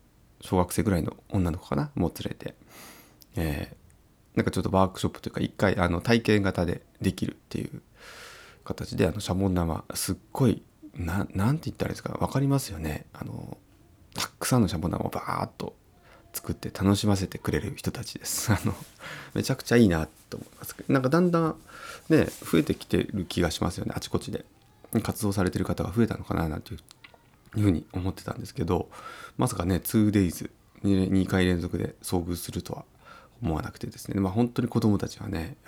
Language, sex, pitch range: Japanese, male, 95-120 Hz